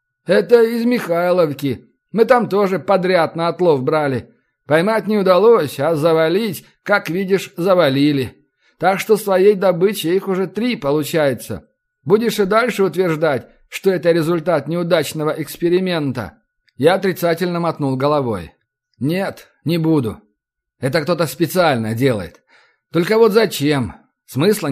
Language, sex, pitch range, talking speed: Russian, male, 140-190 Hz, 120 wpm